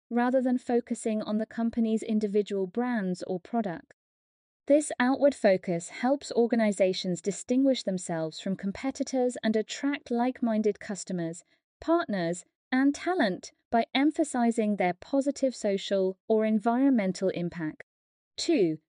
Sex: female